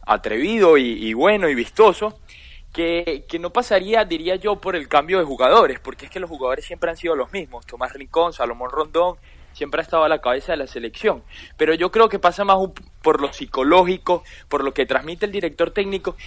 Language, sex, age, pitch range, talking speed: Spanish, male, 20-39, 135-185 Hz, 205 wpm